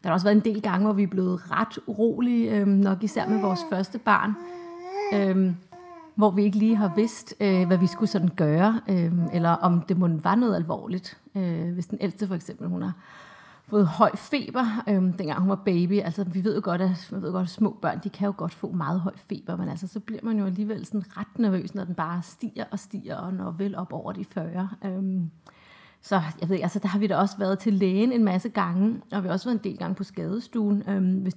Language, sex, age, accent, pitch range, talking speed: Danish, female, 30-49, native, 180-215 Hz, 235 wpm